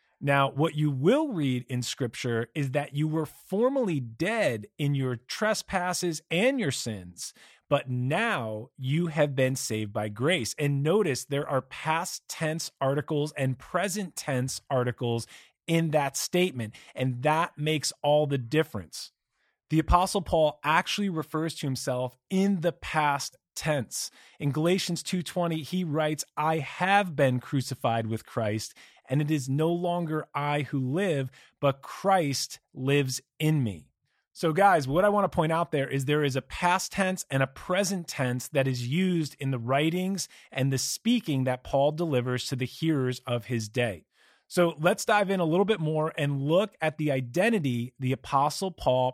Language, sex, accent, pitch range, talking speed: English, male, American, 130-170 Hz, 165 wpm